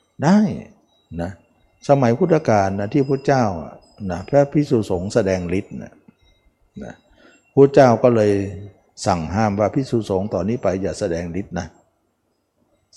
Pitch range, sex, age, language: 100-130 Hz, male, 60-79, Thai